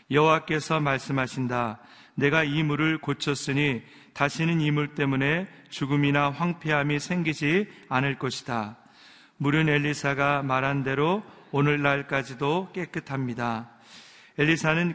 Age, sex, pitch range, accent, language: 40-59, male, 135-155 Hz, native, Korean